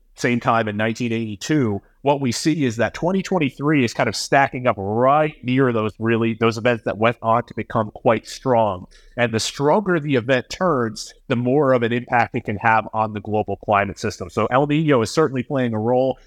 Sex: male